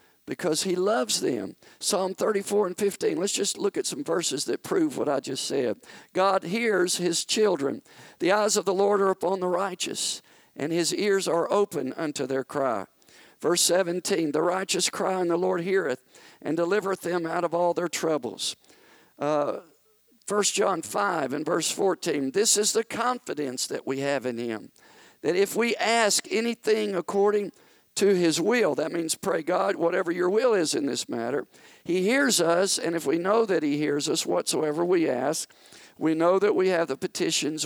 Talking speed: 185 wpm